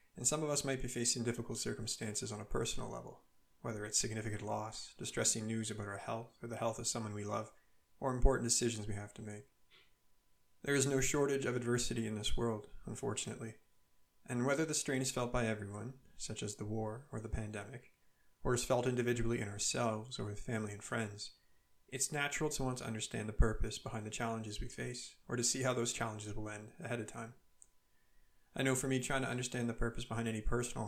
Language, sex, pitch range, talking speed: English, male, 110-125 Hz, 210 wpm